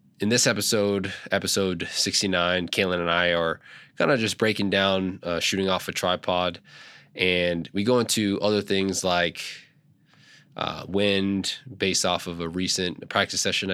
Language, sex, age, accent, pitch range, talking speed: English, male, 20-39, American, 85-100 Hz, 155 wpm